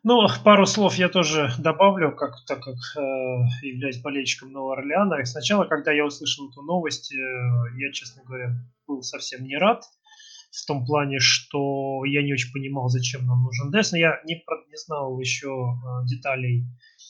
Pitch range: 125-155 Hz